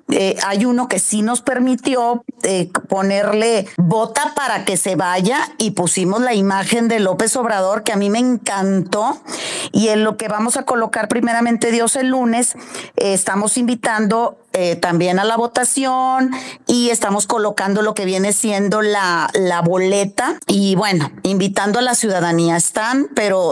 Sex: female